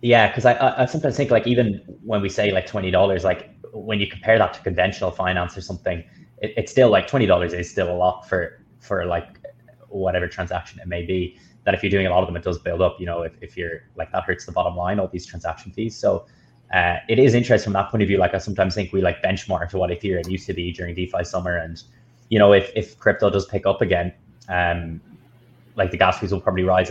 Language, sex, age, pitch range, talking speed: English, male, 20-39, 90-110 Hz, 250 wpm